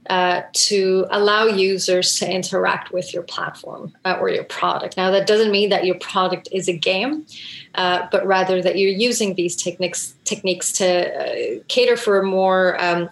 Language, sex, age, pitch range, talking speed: English, female, 30-49, 180-205 Hz, 180 wpm